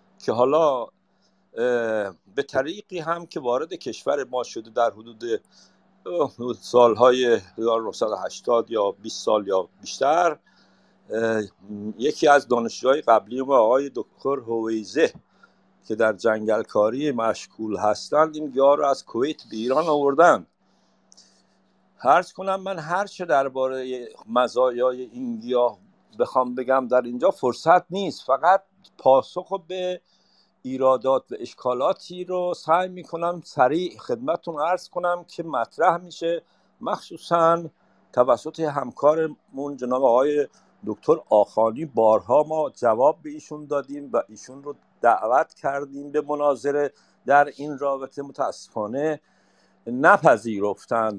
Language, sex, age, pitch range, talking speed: Persian, male, 50-69, 120-170 Hz, 115 wpm